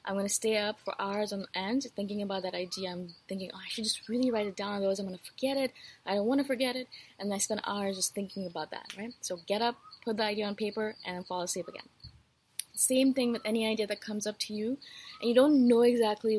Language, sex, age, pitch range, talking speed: English, female, 20-39, 195-235 Hz, 265 wpm